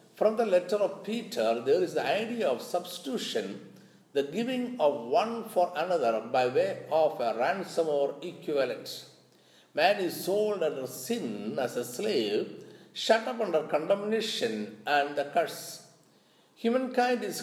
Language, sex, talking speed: Malayalam, male, 140 wpm